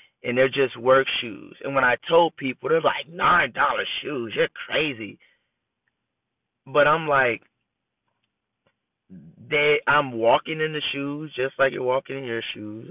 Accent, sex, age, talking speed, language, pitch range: American, male, 30-49, 155 wpm, English, 125-150 Hz